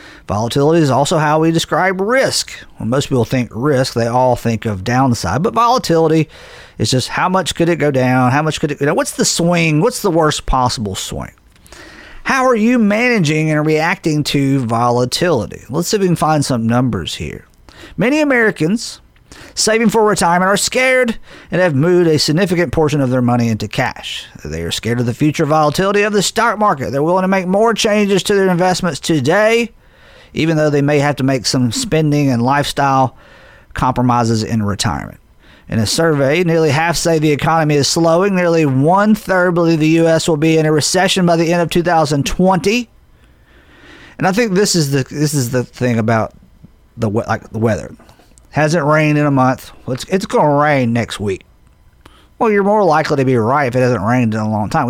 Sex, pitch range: male, 125-180 Hz